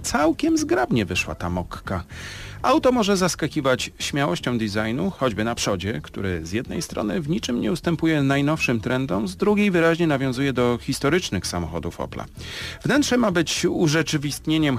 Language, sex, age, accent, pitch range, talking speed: Polish, male, 40-59, native, 105-155 Hz, 140 wpm